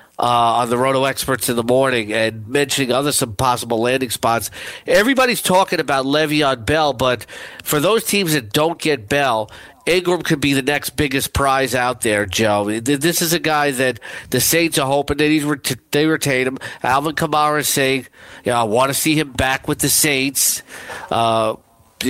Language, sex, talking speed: English, male, 185 wpm